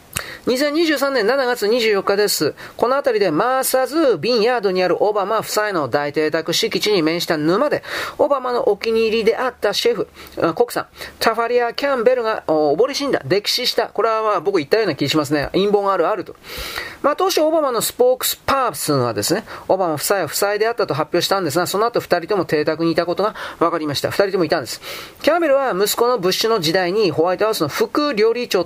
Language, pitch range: Japanese, 185-275 Hz